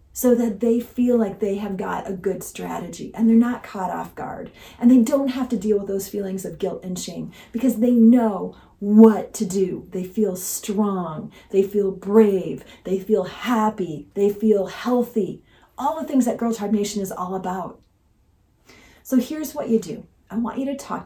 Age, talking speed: 40-59, 195 wpm